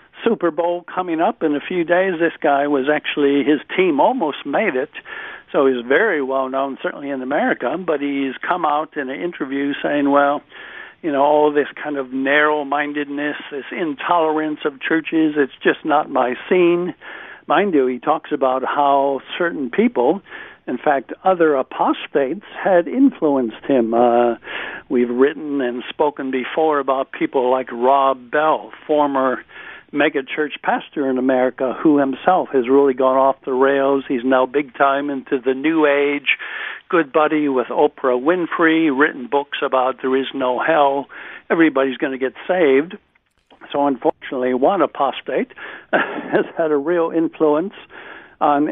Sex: male